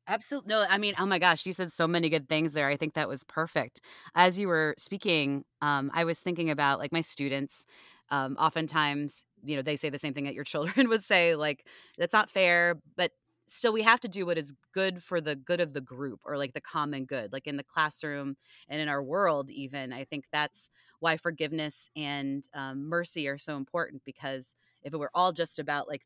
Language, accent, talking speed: English, American, 225 wpm